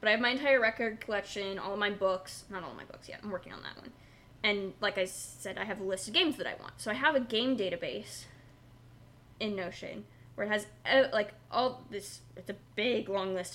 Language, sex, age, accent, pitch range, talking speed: English, female, 10-29, American, 125-210 Hz, 245 wpm